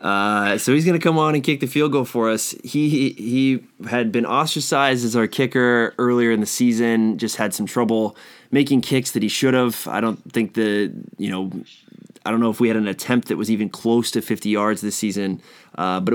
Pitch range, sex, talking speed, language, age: 105-120 Hz, male, 230 wpm, English, 20-39